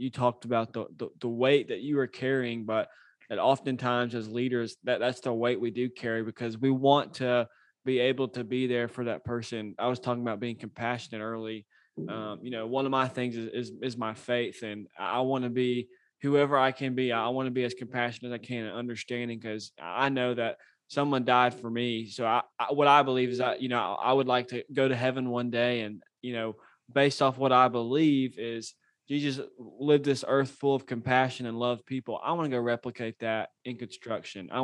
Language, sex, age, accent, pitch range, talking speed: English, male, 20-39, American, 120-135 Hz, 225 wpm